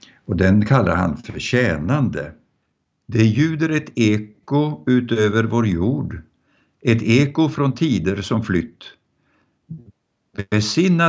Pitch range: 95-125 Hz